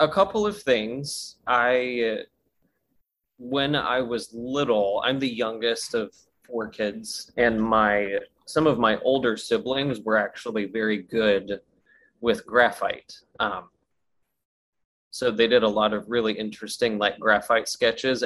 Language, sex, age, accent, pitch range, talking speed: English, male, 20-39, American, 110-130 Hz, 130 wpm